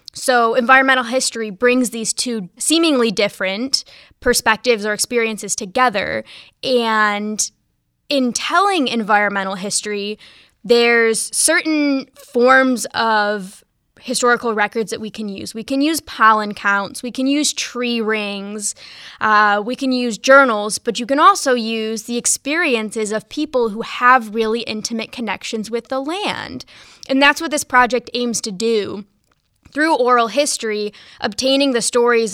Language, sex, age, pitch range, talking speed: English, female, 10-29, 215-255 Hz, 135 wpm